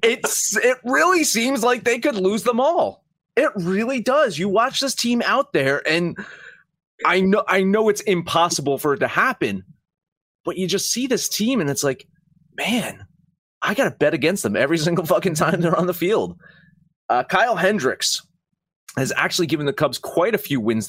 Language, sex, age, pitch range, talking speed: English, male, 30-49, 130-205 Hz, 190 wpm